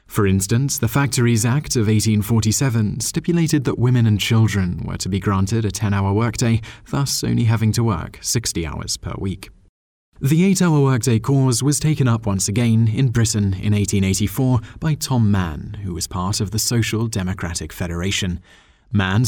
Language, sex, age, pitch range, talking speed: English, male, 20-39, 95-120 Hz, 165 wpm